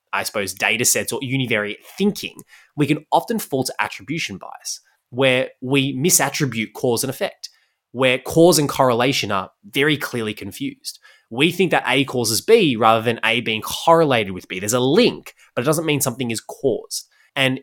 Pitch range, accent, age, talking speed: 110-145 Hz, Australian, 20-39, 175 wpm